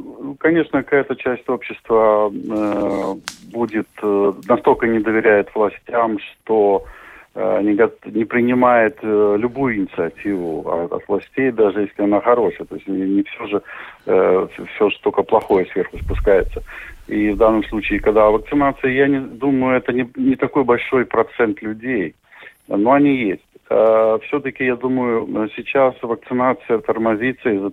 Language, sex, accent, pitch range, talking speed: Russian, male, native, 105-130 Hz, 120 wpm